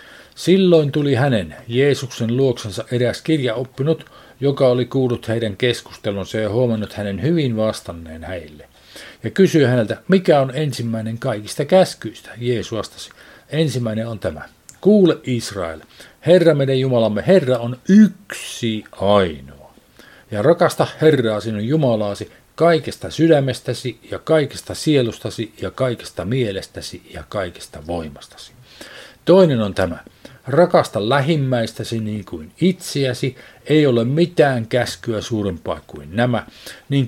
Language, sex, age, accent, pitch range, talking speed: Finnish, male, 50-69, native, 105-145 Hz, 115 wpm